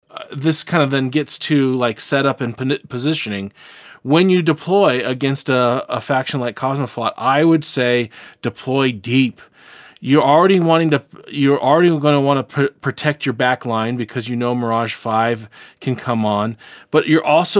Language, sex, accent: English, male, American